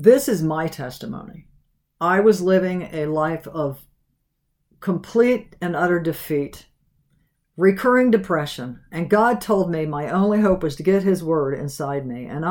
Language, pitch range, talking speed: English, 155-195 Hz, 150 wpm